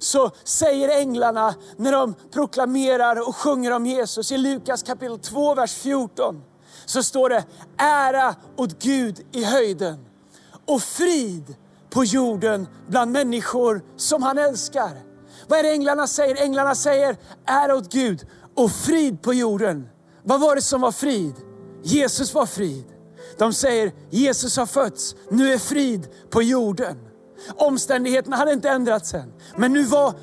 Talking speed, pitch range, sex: 145 wpm, 220-280 Hz, male